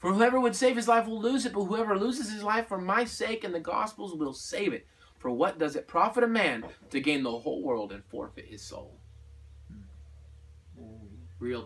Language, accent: English, American